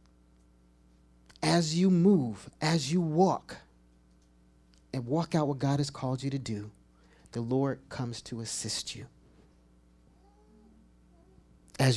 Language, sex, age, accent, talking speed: English, male, 40-59, American, 115 wpm